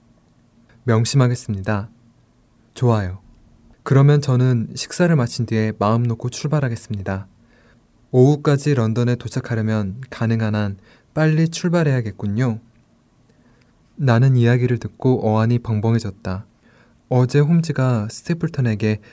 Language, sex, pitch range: Korean, male, 110-130 Hz